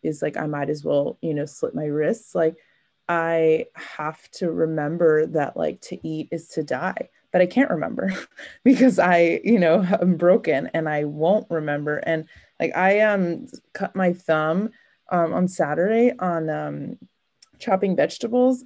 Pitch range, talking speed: 160-210 Hz, 165 wpm